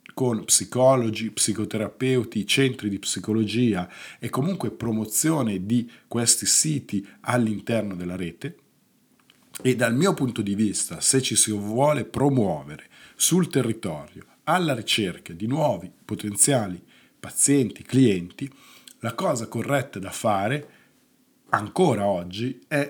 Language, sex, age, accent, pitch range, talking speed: Italian, male, 50-69, native, 105-135 Hz, 115 wpm